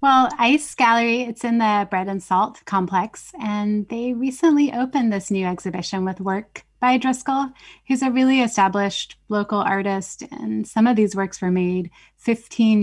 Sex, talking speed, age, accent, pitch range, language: female, 165 wpm, 10-29, American, 190-230 Hz, English